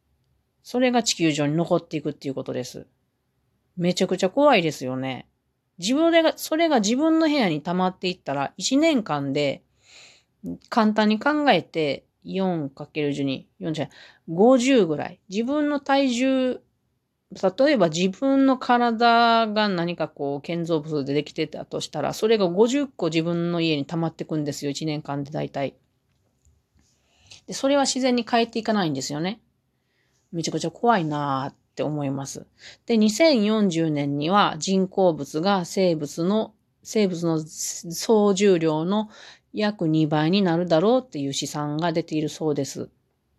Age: 40-59